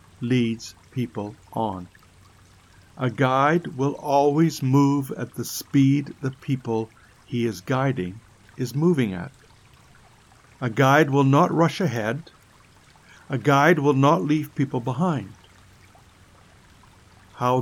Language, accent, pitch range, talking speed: English, American, 95-135 Hz, 110 wpm